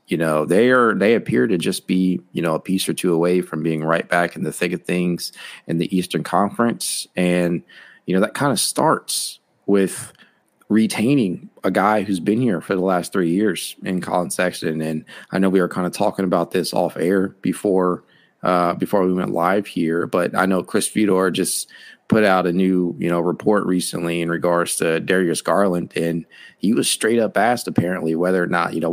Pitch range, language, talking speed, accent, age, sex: 85-95 Hz, English, 210 wpm, American, 30-49, male